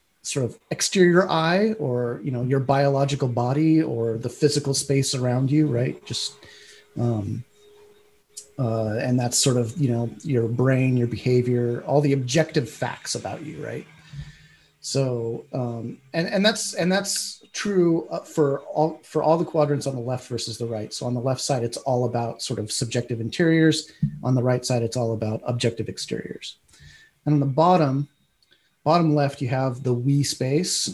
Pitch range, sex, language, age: 120-150 Hz, male, English, 30-49